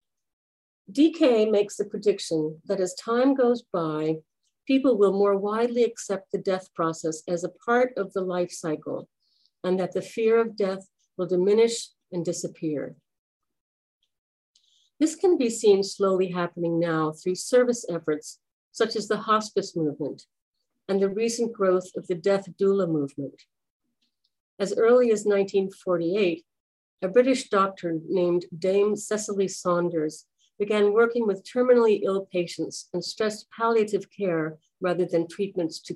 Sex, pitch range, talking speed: female, 175-220 Hz, 140 wpm